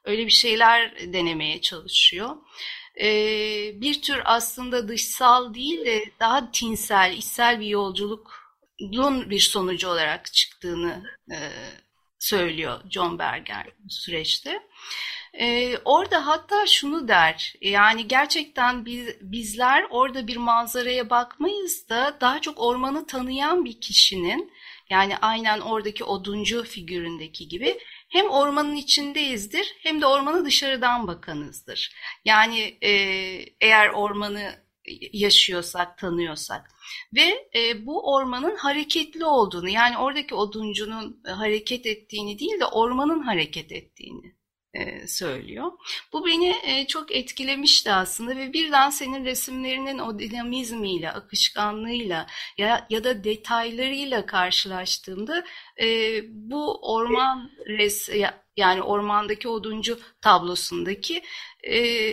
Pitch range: 205-275 Hz